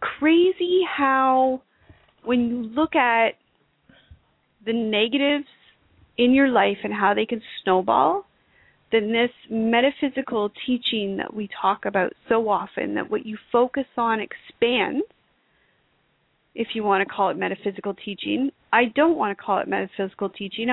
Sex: female